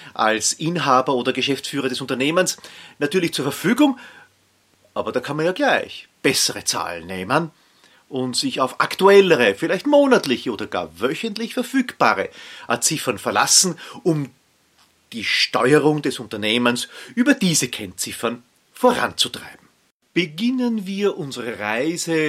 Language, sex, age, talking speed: German, male, 40-59, 115 wpm